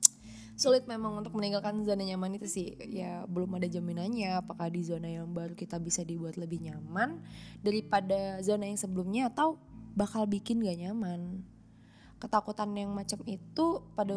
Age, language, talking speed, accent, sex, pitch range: 20-39, Indonesian, 155 wpm, native, female, 175-220 Hz